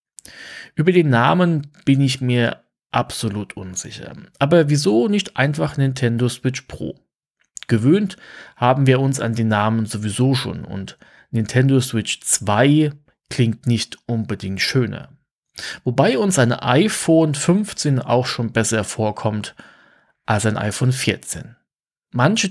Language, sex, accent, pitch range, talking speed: German, male, German, 115-140 Hz, 125 wpm